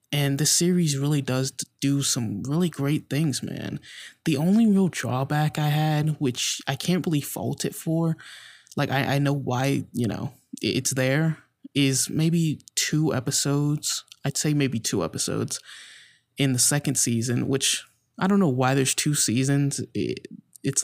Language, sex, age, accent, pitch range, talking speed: English, male, 20-39, American, 130-150 Hz, 160 wpm